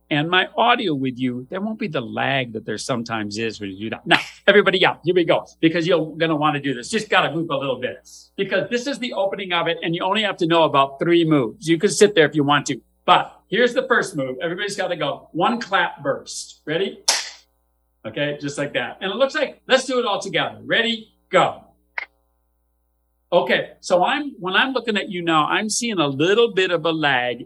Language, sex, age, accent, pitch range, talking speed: English, male, 50-69, American, 135-215 Hz, 235 wpm